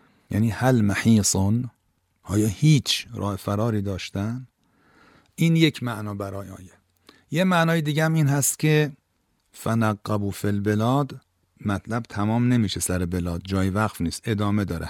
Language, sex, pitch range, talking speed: Persian, male, 100-125 Hz, 130 wpm